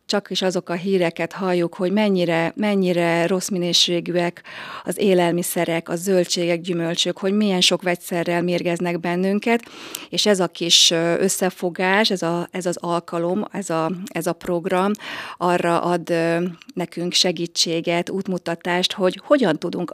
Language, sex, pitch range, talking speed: Hungarian, female, 170-185 Hz, 135 wpm